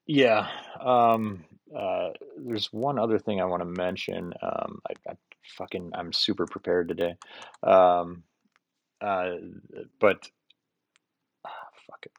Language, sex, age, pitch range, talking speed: English, male, 30-49, 85-110 Hz, 120 wpm